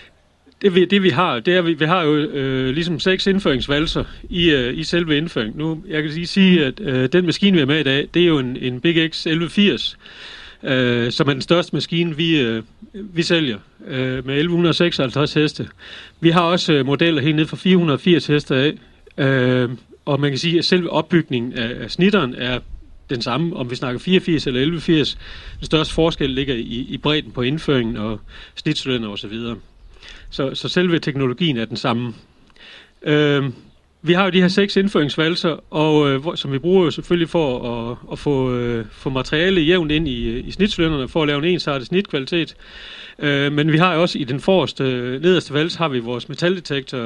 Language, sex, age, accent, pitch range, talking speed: Danish, male, 40-59, native, 130-170 Hz, 195 wpm